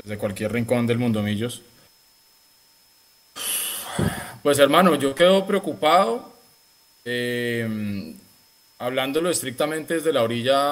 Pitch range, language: 110-135 Hz, Spanish